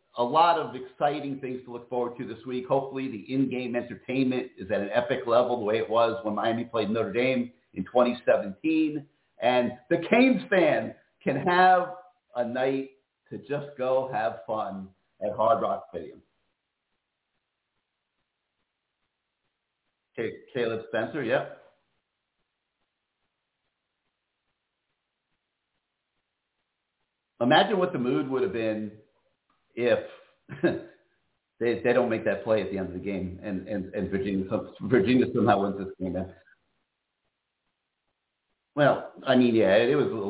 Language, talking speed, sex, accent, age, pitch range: English, 130 wpm, male, American, 50-69, 100-130 Hz